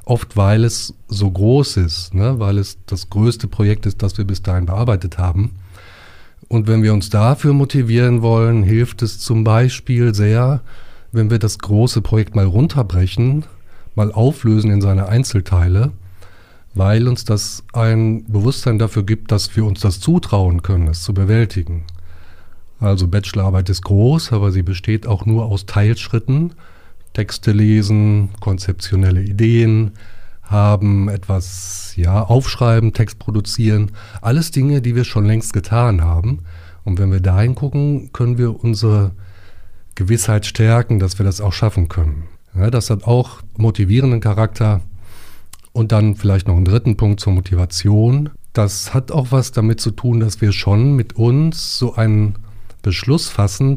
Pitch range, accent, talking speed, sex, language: 95-115 Hz, German, 150 wpm, male, German